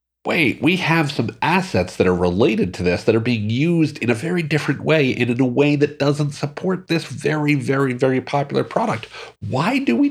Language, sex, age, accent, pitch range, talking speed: English, male, 50-69, American, 90-135 Hz, 210 wpm